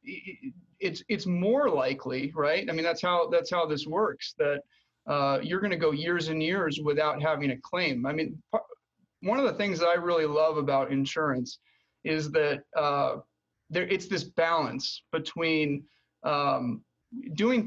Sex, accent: male, American